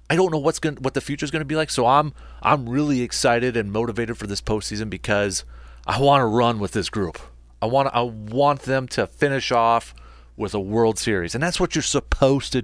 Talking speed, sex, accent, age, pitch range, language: 235 wpm, male, American, 30-49, 85-135 Hz, English